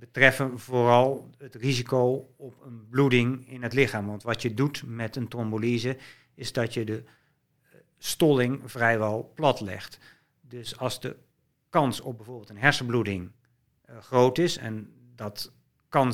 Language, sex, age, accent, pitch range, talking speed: Dutch, male, 50-69, Dutch, 110-130 Hz, 140 wpm